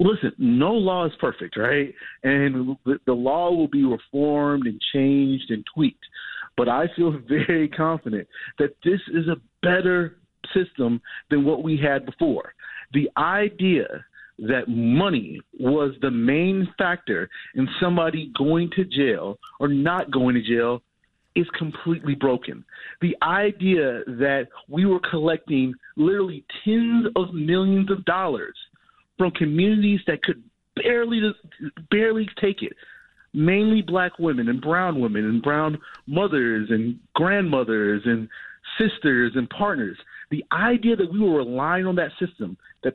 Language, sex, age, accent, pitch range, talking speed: English, male, 40-59, American, 135-190 Hz, 135 wpm